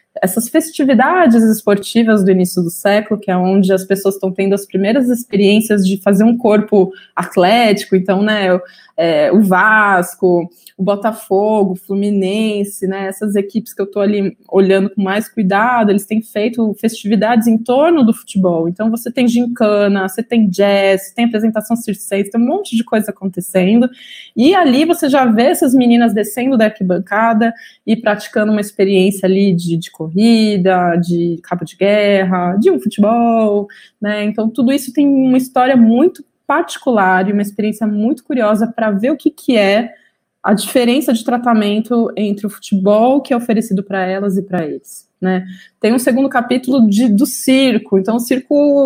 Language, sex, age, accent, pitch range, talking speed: Portuguese, female, 20-39, Brazilian, 195-245 Hz, 170 wpm